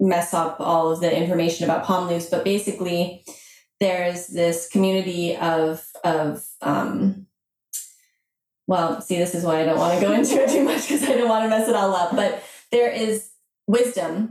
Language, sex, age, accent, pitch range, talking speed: English, female, 20-39, American, 175-210 Hz, 185 wpm